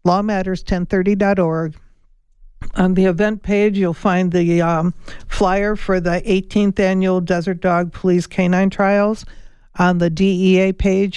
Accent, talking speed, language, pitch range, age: American, 125 wpm, English, 170-195 Hz, 60-79